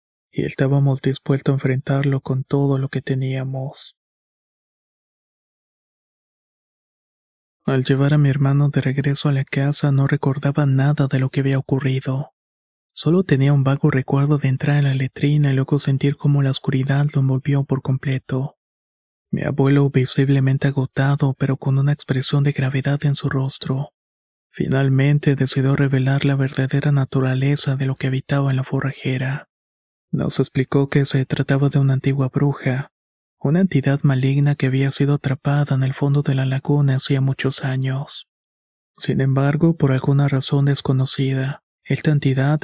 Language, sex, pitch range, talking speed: Spanish, male, 135-140 Hz, 150 wpm